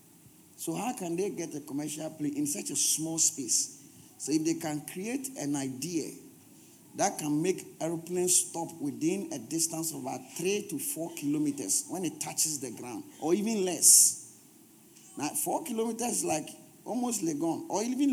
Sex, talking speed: male, 170 wpm